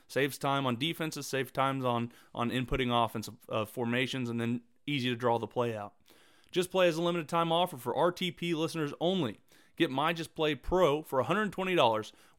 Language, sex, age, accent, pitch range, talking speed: English, male, 30-49, American, 125-165 Hz, 185 wpm